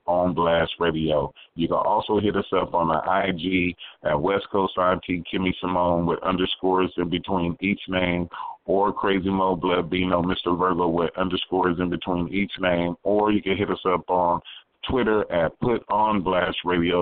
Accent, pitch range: American, 85-95 Hz